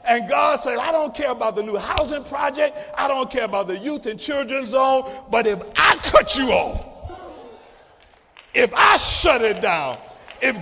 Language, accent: English, American